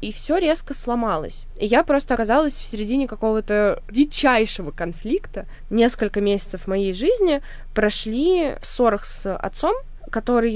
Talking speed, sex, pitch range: 130 wpm, female, 180-230 Hz